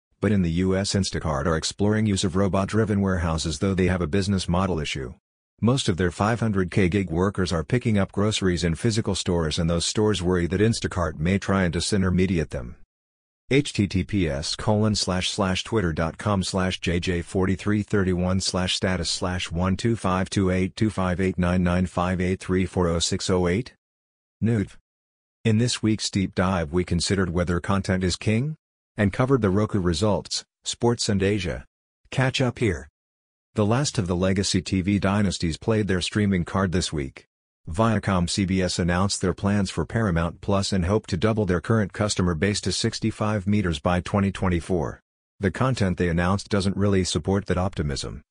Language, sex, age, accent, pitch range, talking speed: English, male, 50-69, American, 90-105 Hz, 135 wpm